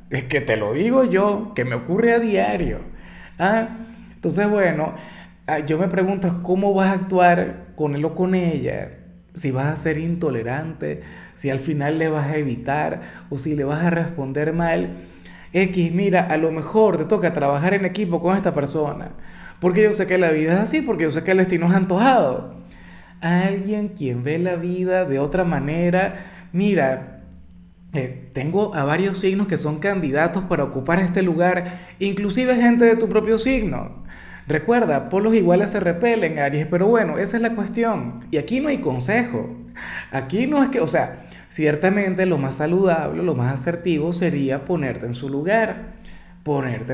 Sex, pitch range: male, 140-195 Hz